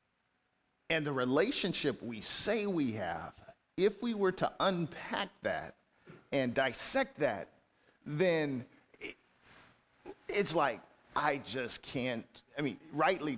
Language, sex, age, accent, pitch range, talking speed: English, male, 40-59, American, 135-185 Hz, 110 wpm